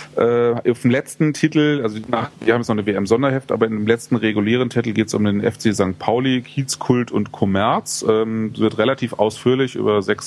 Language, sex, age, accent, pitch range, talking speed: German, male, 30-49, German, 100-120 Hz, 205 wpm